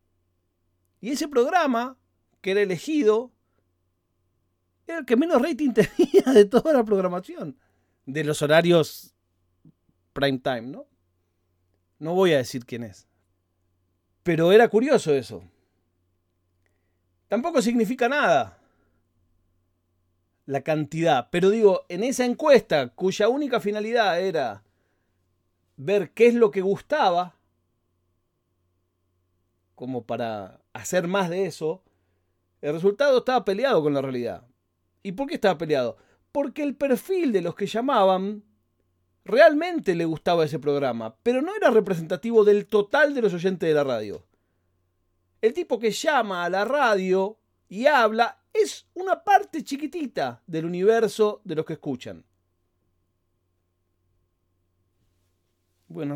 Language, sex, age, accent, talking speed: Spanish, male, 40-59, Argentinian, 120 wpm